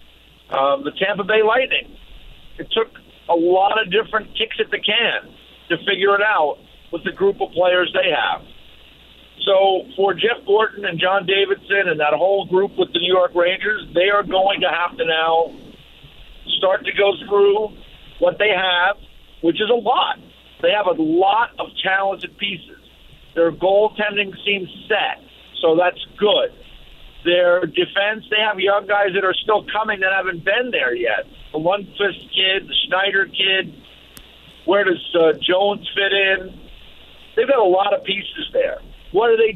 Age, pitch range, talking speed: 50-69, 180-215 Hz, 170 wpm